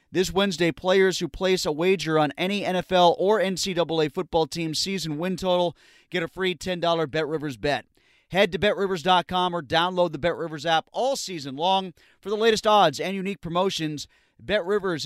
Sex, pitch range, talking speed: male, 165-195 Hz, 165 wpm